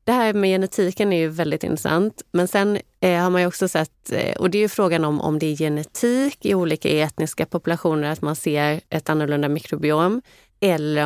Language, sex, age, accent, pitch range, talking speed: Swedish, female, 30-49, native, 145-175 Hz, 200 wpm